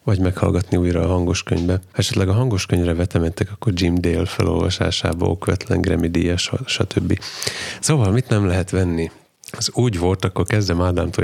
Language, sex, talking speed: Hungarian, male, 155 wpm